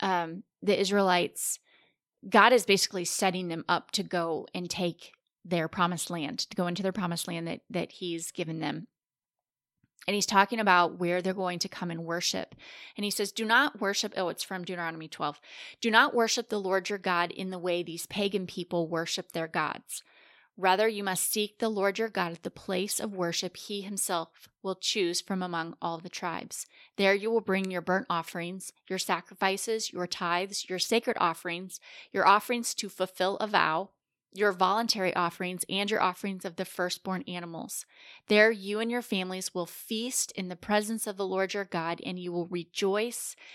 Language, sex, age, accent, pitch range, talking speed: English, female, 20-39, American, 175-205 Hz, 185 wpm